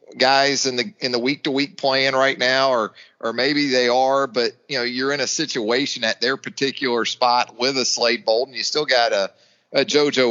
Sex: male